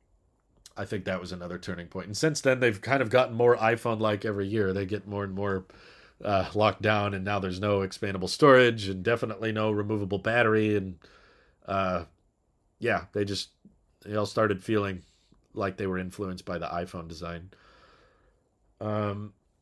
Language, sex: English, male